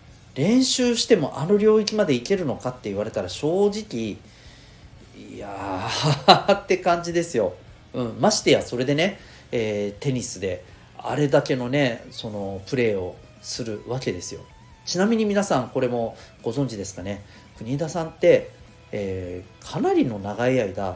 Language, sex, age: Japanese, male, 40-59